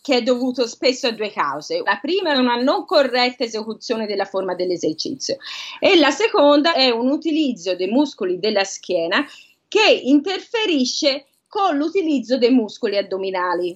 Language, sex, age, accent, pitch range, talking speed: Italian, female, 30-49, native, 220-300 Hz, 150 wpm